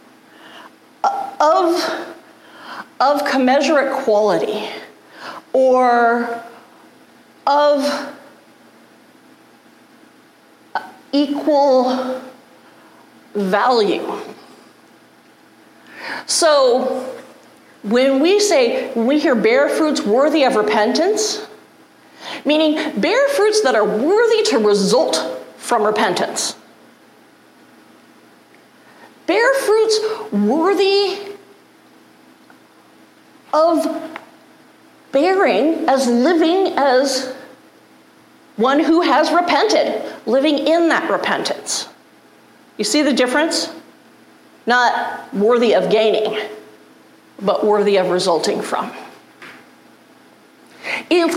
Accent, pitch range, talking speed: American, 255-340 Hz, 70 wpm